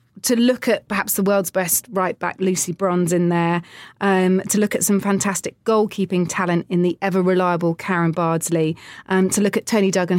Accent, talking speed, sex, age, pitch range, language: British, 185 wpm, female, 30-49, 175-205 Hz, English